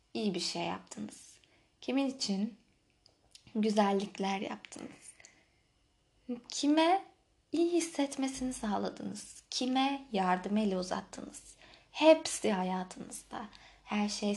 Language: Turkish